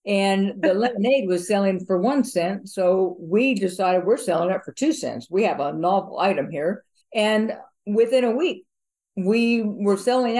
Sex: female